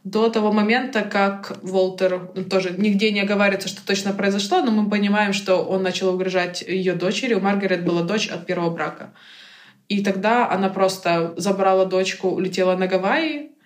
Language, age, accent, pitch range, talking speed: Ukrainian, 20-39, native, 185-205 Hz, 165 wpm